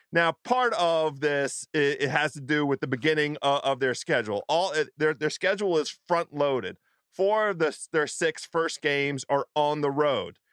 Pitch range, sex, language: 145-175 Hz, male, English